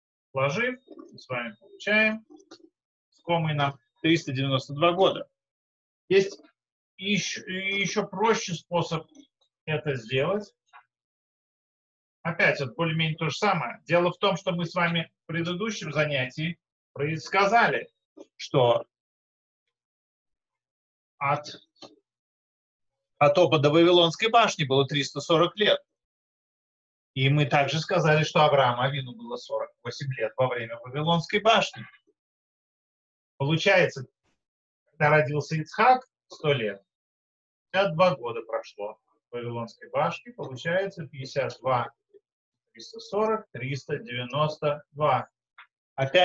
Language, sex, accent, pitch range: Russian, male, native, 135-190 Hz